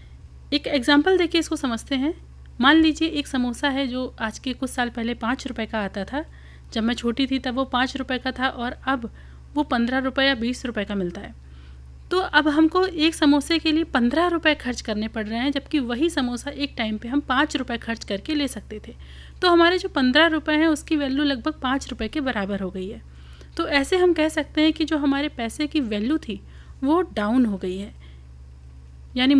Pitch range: 220-290 Hz